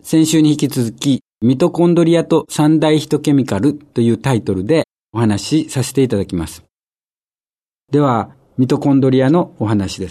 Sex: male